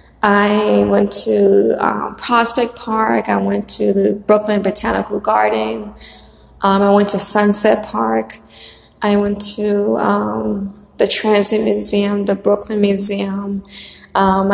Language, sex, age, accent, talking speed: English, female, 20-39, American, 125 wpm